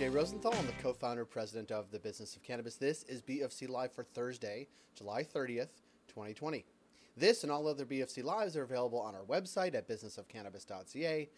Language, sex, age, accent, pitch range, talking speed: English, male, 30-49, American, 115-155 Hz, 180 wpm